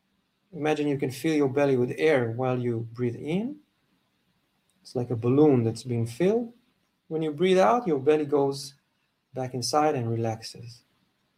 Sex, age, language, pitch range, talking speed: male, 40-59, English, 125-165 Hz, 160 wpm